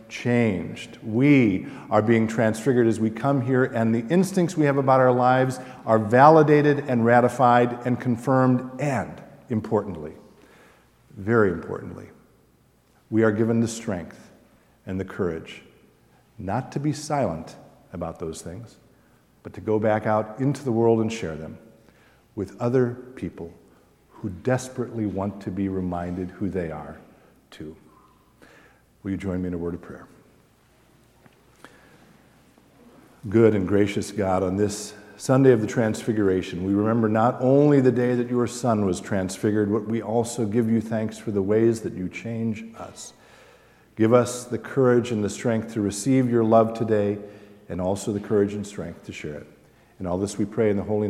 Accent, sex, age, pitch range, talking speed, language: American, male, 50-69, 100-120 Hz, 160 wpm, English